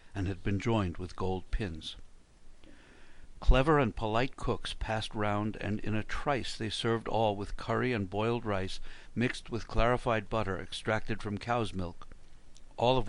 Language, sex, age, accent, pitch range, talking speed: English, male, 60-79, American, 95-115 Hz, 160 wpm